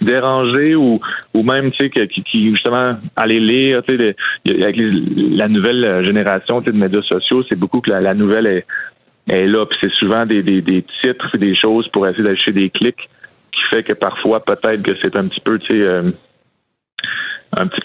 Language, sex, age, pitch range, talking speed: French, male, 30-49, 100-125 Hz, 190 wpm